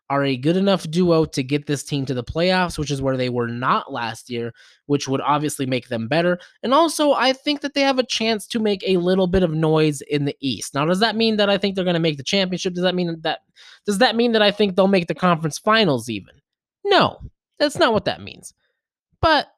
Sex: male